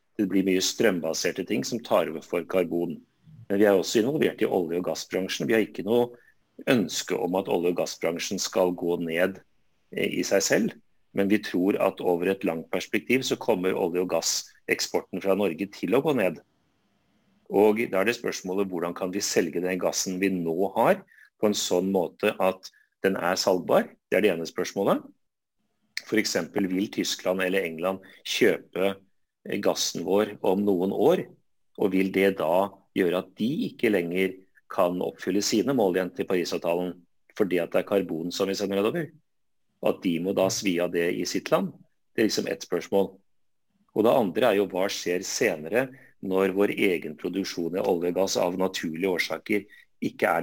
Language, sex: English, male